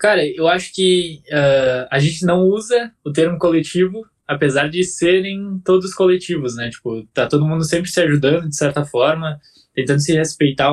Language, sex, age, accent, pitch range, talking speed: Portuguese, male, 10-29, Brazilian, 130-170 Hz, 175 wpm